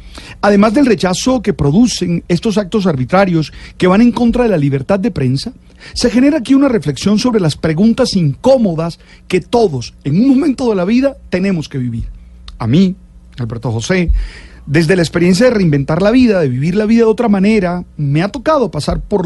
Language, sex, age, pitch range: Spanish, male, 40-59, 150-235 Hz